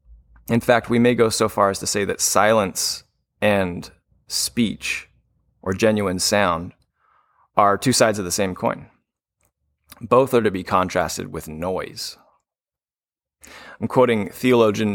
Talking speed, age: 135 wpm, 30-49